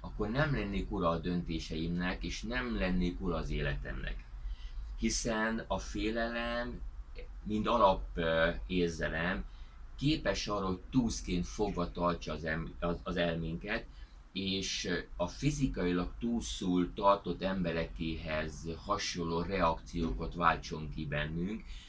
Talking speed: 100 wpm